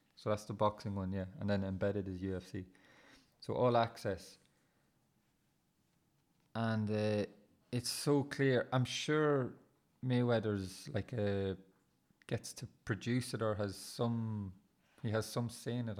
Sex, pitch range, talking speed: male, 100-120 Hz, 140 wpm